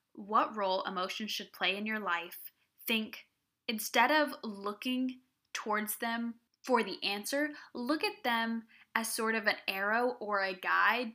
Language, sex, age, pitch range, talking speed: English, female, 10-29, 200-255 Hz, 150 wpm